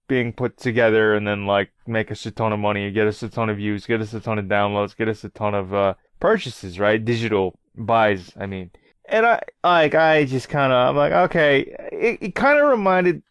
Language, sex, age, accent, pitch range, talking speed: English, male, 20-39, American, 110-150 Hz, 225 wpm